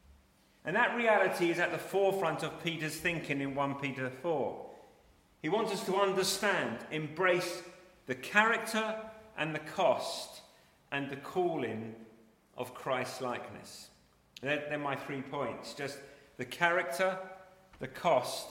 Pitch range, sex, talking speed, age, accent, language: 130-160 Hz, male, 135 wpm, 40-59, British, English